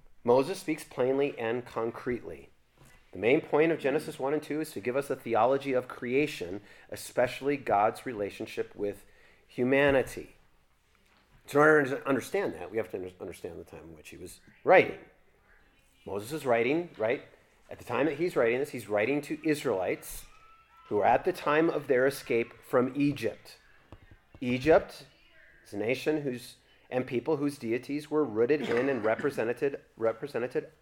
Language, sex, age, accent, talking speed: English, male, 30-49, American, 160 wpm